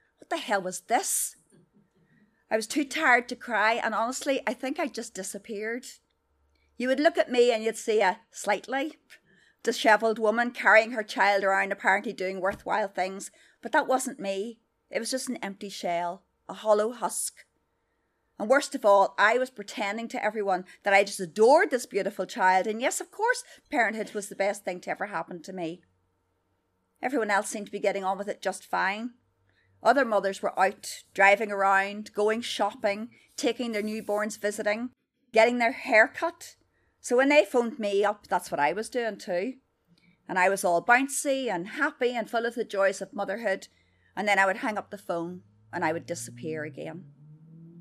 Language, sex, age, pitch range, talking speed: English, female, 40-59, 190-240 Hz, 185 wpm